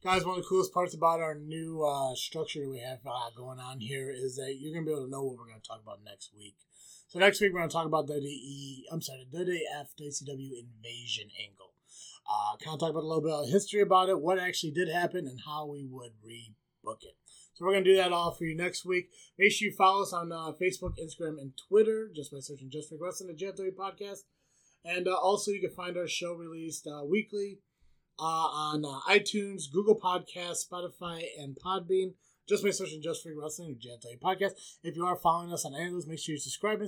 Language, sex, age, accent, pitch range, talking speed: English, male, 20-39, American, 140-180 Hz, 235 wpm